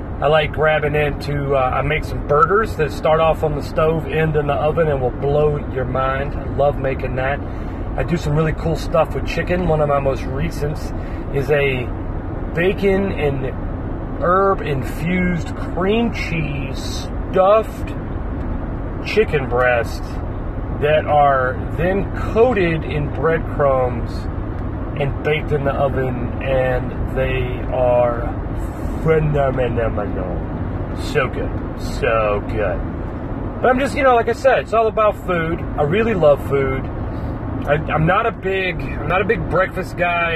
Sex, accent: male, American